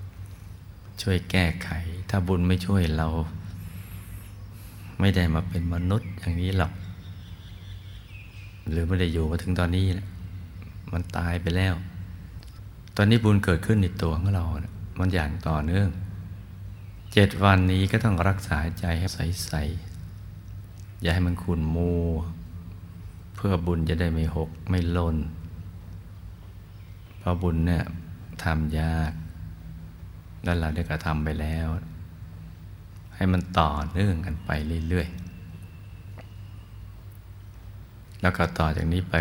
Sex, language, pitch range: male, Thai, 85-100 Hz